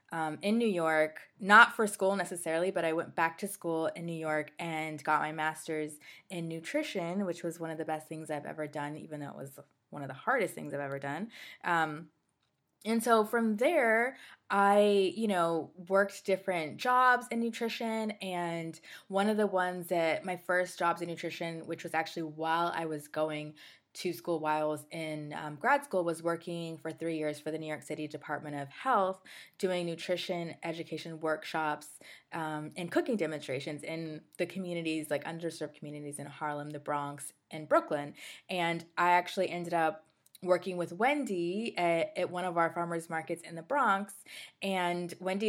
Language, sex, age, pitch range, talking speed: English, female, 20-39, 160-185 Hz, 180 wpm